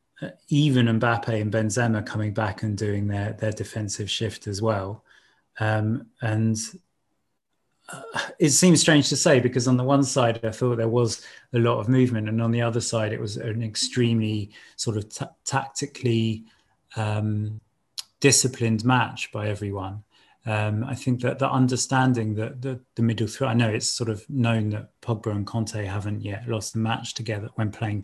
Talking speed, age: 180 wpm, 30-49